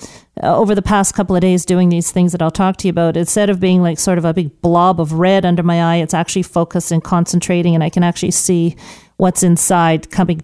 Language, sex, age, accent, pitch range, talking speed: English, female, 40-59, American, 170-200 Hz, 240 wpm